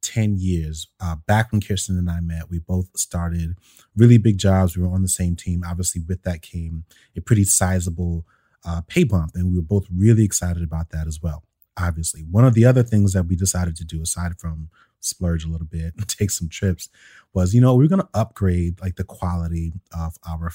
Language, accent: English, American